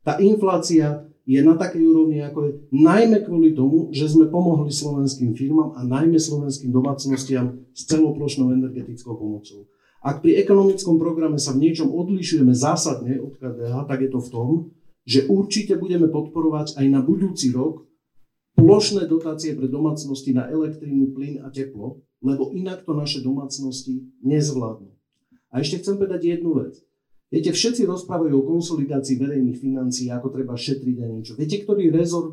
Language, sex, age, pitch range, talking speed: Slovak, male, 50-69, 130-160 Hz, 155 wpm